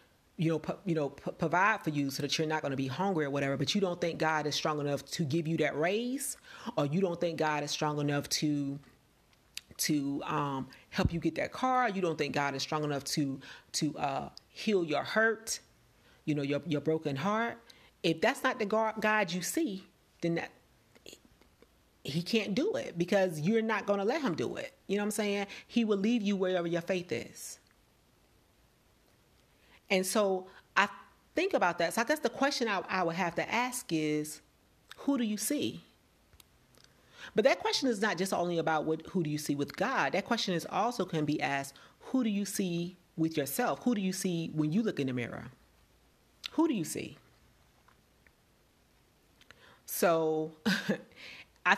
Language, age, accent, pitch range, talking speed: English, 40-59, American, 150-205 Hz, 195 wpm